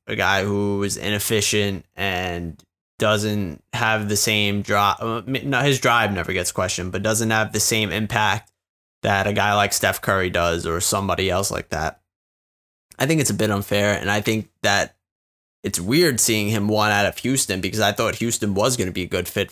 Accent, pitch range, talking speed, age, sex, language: American, 95-115 Hz, 195 wpm, 20-39, male, English